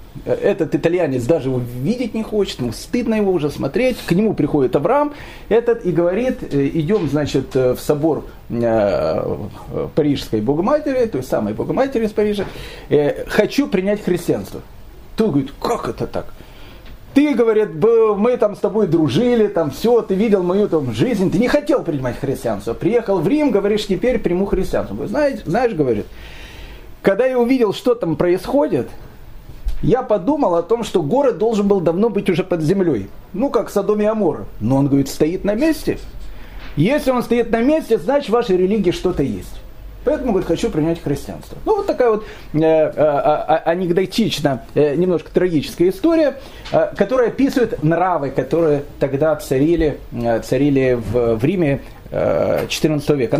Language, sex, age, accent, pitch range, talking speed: Russian, male, 40-59, native, 140-225 Hz, 155 wpm